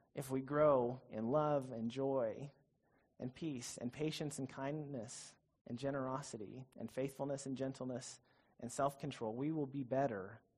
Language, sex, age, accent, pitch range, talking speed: English, male, 30-49, American, 120-145 Hz, 140 wpm